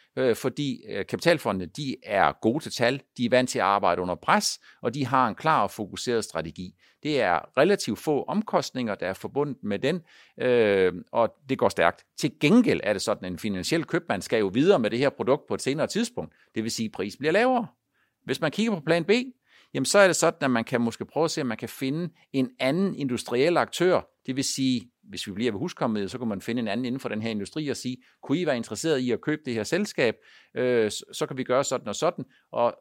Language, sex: Danish, male